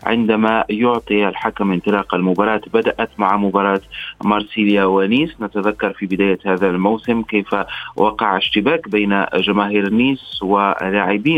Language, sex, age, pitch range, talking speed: Arabic, male, 30-49, 100-115 Hz, 115 wpm